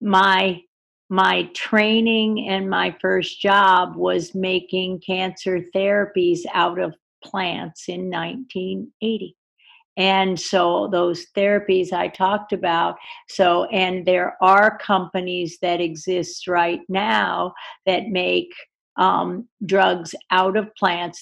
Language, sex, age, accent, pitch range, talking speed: English, female, 50-69, American, 180-210 Hz, 110 wpm